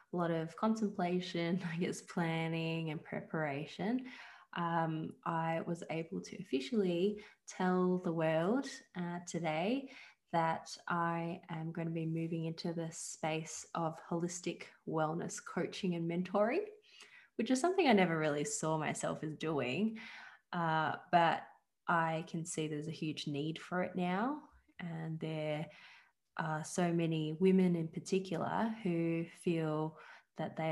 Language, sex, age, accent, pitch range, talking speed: English, female, 20-39, Australian, 160-180 Hz, 135 wpm